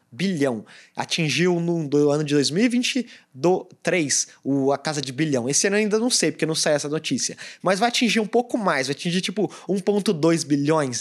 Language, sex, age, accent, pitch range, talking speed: Portuguese, male, 20-39, Brazilian, 145-215 Hz, 190 wpm